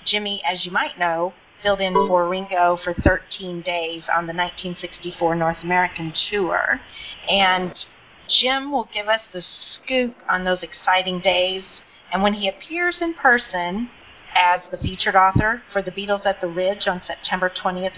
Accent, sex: American, female